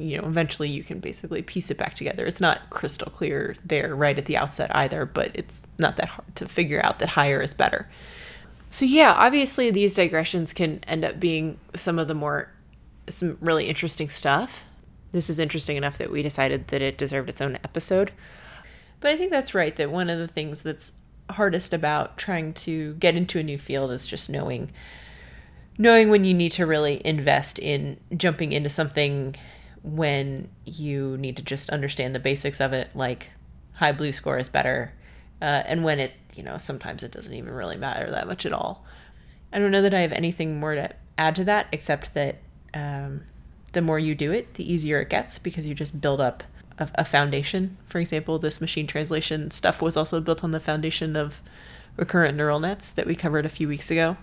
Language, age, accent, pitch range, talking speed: English, 20-39, American, 140-170 Hz, 200 wpm